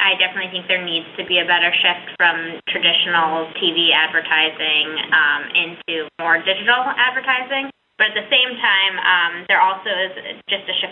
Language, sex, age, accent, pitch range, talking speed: English, female, 10-29, American, 185-220 Hz, 170 wpm